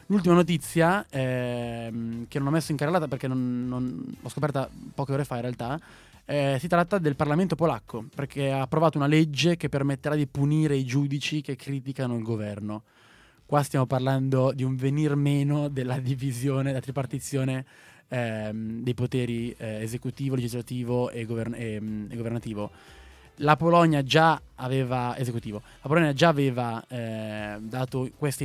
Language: Italian